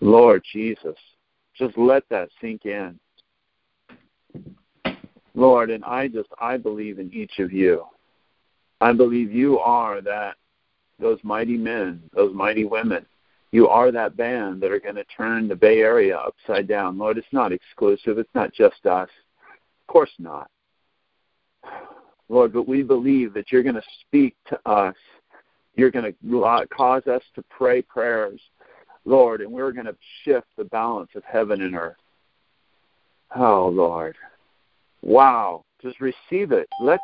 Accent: American